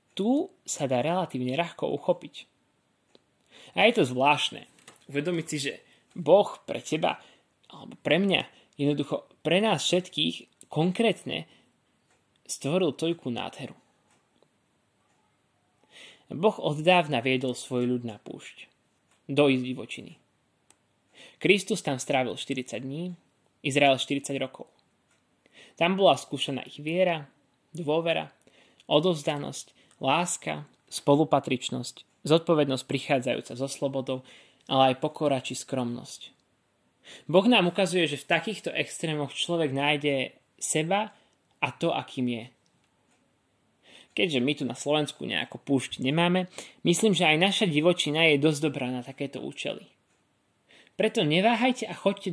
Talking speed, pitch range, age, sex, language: 115 wpm, 135-175 Hz, 20-39, male, Slovak